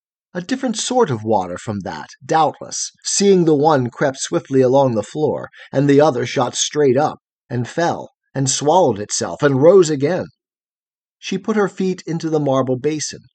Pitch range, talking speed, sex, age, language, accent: 130-175 Hz, 170 wpm, male, 40-59, English, American